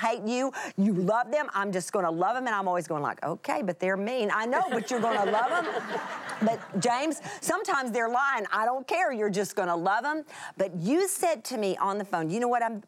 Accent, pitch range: American, 180-240 Hz